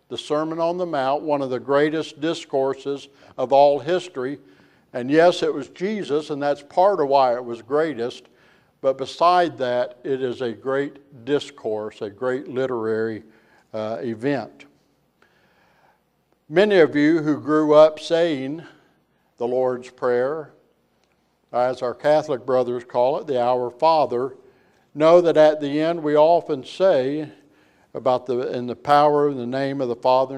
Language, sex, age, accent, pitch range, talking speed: English, male, 60-79, American, 125-155 Hz, 150 wpm